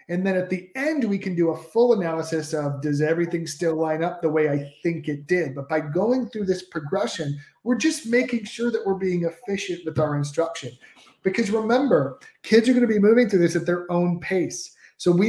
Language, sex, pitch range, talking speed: English, male, 160-200 Hz, 215 wpm